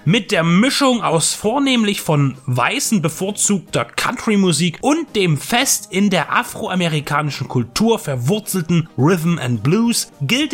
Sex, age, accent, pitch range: male, 30-49, German, 140-205 Hz